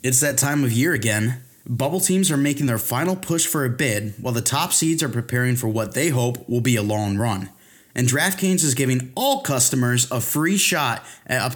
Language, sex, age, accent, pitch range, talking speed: English, male, 20-39, American, 120-150 Hz, 220 wpm